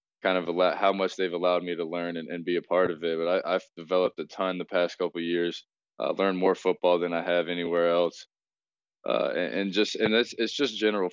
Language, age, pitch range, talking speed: English, 20-39, 90-95 Hz, 250 wpm